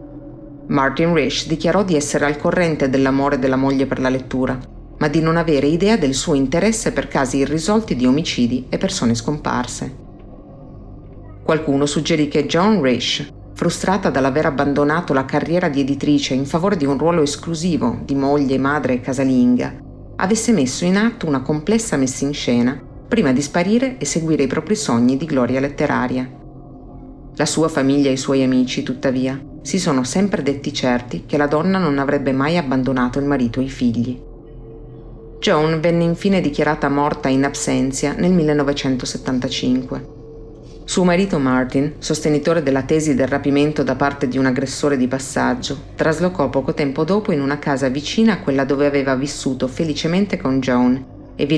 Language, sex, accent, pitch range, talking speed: Italian, female, native, 130-155 Hz, 160 wpm